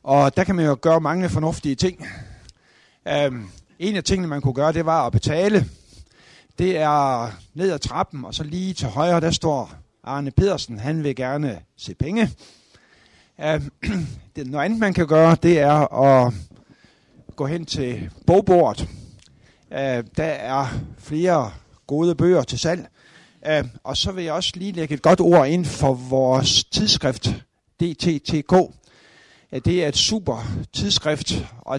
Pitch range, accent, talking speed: 130-170 Hz, native, 155 wpm